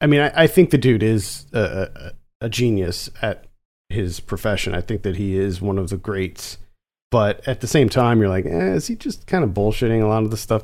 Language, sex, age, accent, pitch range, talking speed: English, male, 40-59, American, 100-125 Hz, 245 wpm